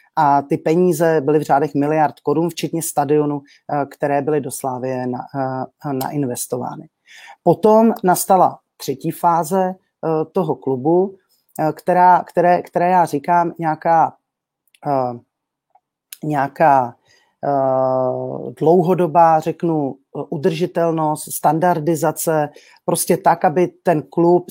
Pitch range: 140-170 Hz